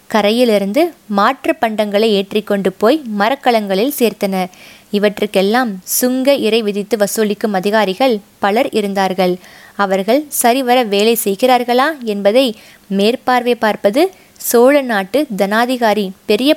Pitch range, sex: 205-260 Hz, female